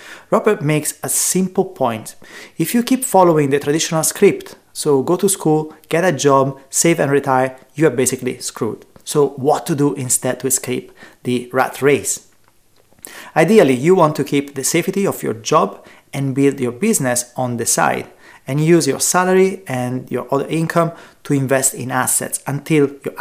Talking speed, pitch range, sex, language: 175 wpm, 130-165 Hz, male, English